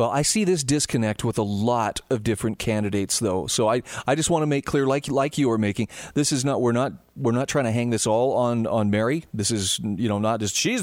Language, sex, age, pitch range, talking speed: English, male, 40-59, 110-150 Hz, 260 wpm